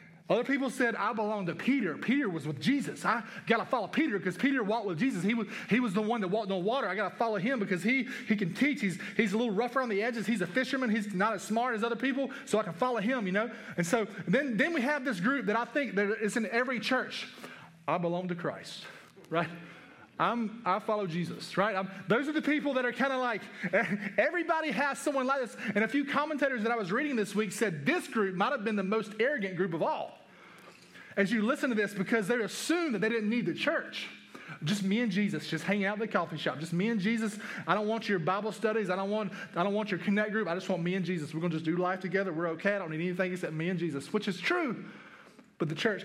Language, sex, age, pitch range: English, male, 30-49, 185-240 Hz